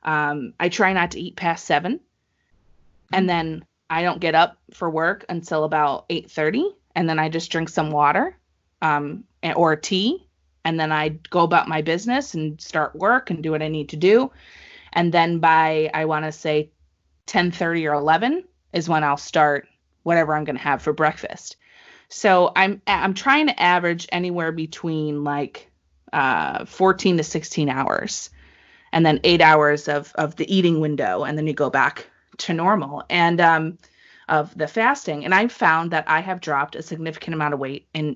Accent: American